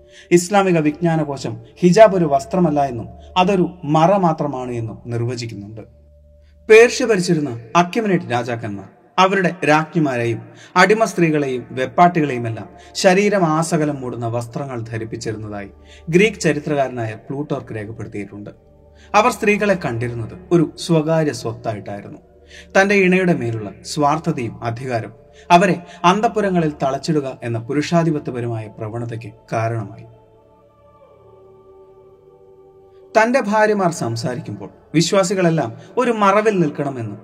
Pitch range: 115-175 Hz